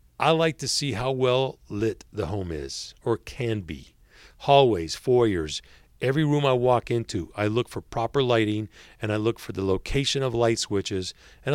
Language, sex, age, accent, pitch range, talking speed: English, male, 40-59, American, 95-130 Hz, 180 wpm